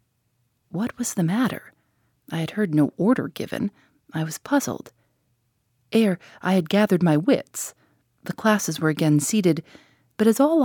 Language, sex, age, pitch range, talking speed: English, female, 40-59, 150-210 Hz, 150 wpm